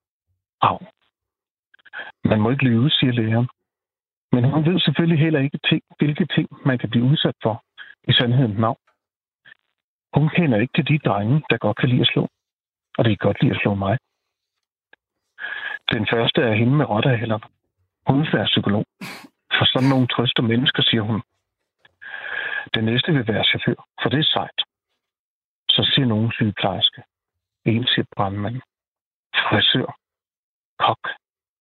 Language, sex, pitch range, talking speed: Danish, male, 110-150 Hz, 150 wpm